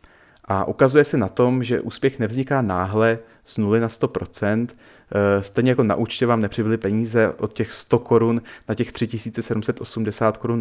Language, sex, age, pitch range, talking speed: Czech, male, 30-49, 110-130 Hz, 155 wpm